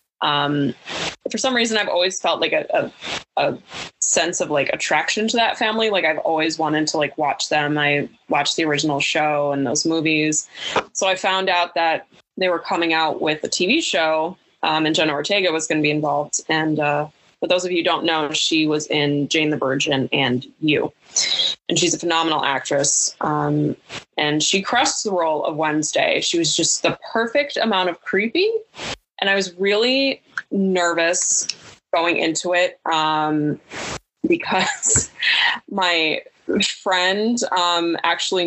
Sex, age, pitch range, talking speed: female, 20-39, 150-195 Hz, 170 wpm